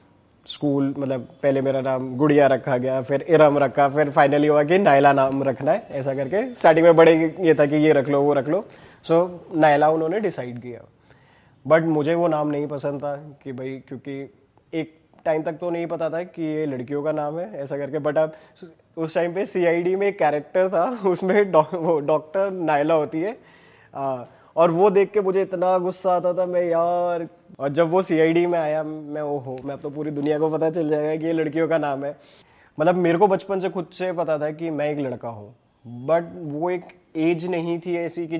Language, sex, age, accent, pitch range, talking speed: Hindi, male, 20-39, native, 145-170 Hz, 210 wpm